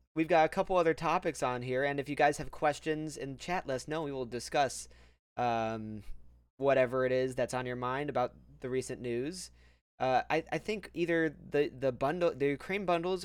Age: 20-39